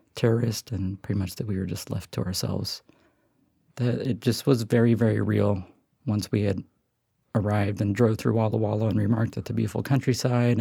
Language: English